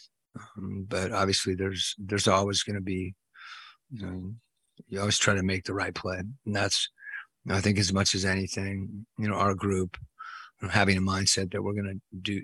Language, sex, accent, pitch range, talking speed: English, male, American, 95-100 Hz, 205 wpm